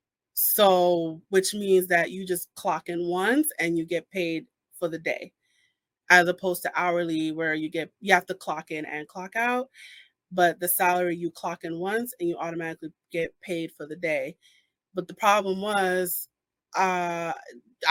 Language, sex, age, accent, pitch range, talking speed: English, female, 30-49, American, 170-210 Hz, 170 wpm